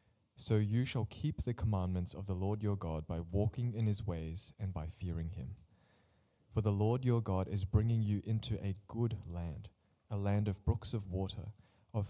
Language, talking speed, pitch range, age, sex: English, 195 wpm, 95-110 Hz, 20-39, male